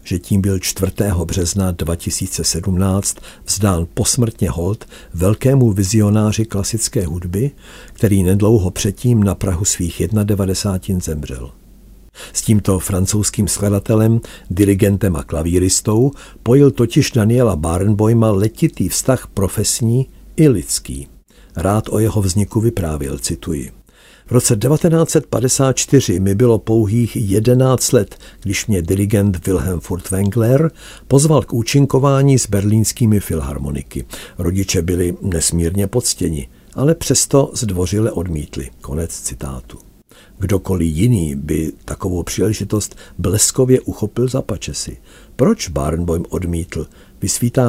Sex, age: male, 60-79